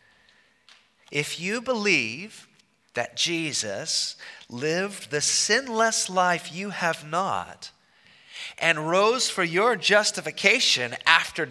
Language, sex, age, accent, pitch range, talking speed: English, male, 30-49, American, 165-225 Hz, 95 wpm